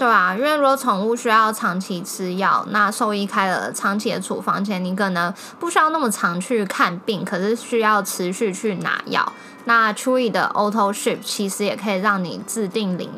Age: 10-29